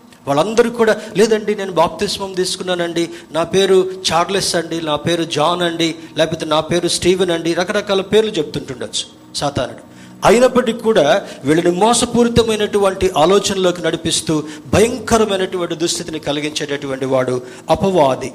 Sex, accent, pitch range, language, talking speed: male, native, 140-185 Hz, Telugu, 110 wpm